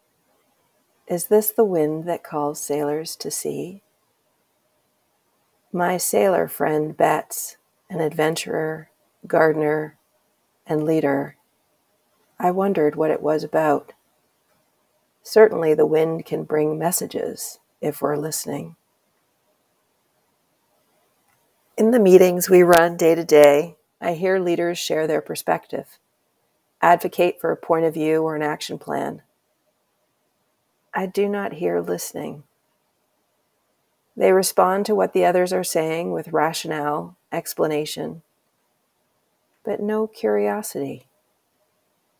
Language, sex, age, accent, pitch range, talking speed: English, female, 40-59, American, 150-180 Hz, 110 wpm